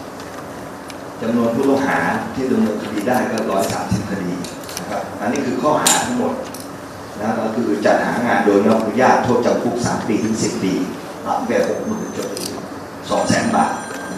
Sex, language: male, Thai